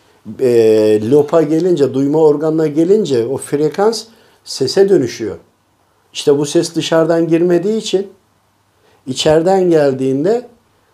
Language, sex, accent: Turkish, male, native